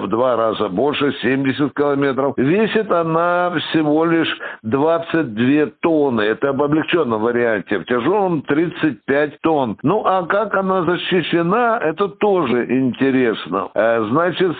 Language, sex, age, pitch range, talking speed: Russian, male, 60-79, 135-175 Hz, 120 wpm